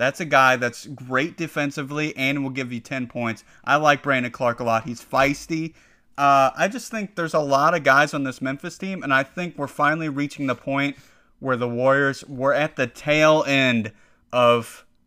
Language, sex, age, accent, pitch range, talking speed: English, male, 30-49, American, 115-140 Hz, 200 wpm